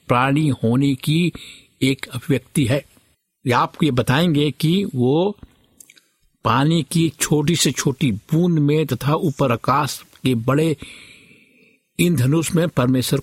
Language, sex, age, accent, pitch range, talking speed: Hindi, male, 60-79, native, 120-155 Hz, 120 wpm